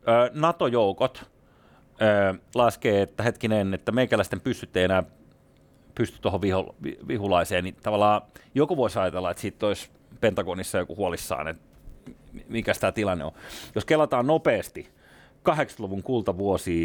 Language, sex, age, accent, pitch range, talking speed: Finnish, male, 30-49, native, 95-135 Hz, 130 wpm